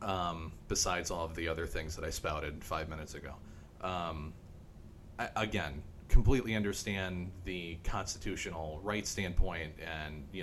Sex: male